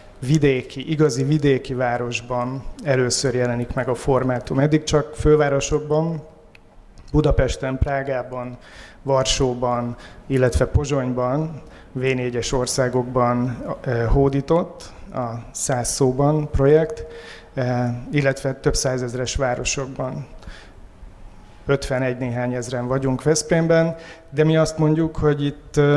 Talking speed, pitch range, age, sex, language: 90 wpm, 125-145 Hz, 30-49, male, Hungarian